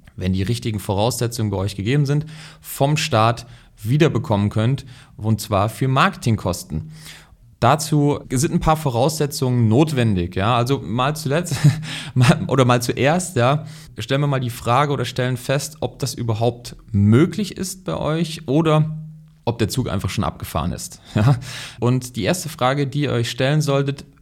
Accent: German